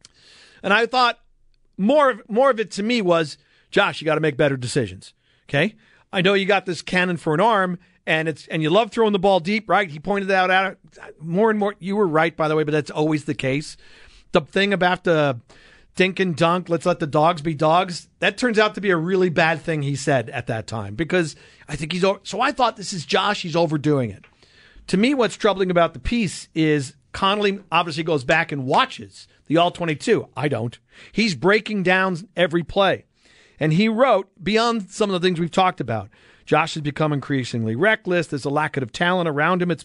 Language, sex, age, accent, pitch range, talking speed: English, male, 50-69, American, 155-205 Hz, 215 wpm